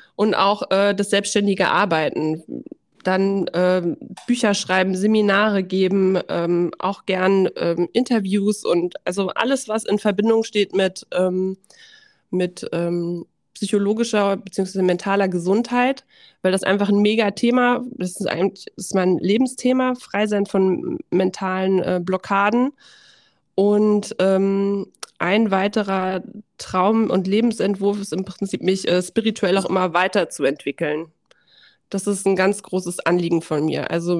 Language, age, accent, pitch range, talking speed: German, 20-39, German, 185-215 Hz, 130 wpm